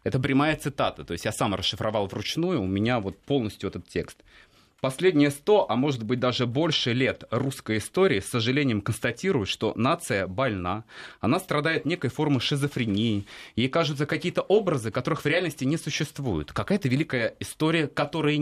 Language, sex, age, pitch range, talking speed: Russian, male, 30-49, 110-155 Hz, 160 wpm